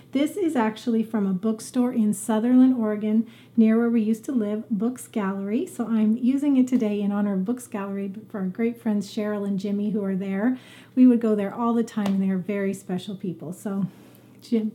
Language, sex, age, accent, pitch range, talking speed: English, female, 30-49, American, 205-250 Hz, 210 wpm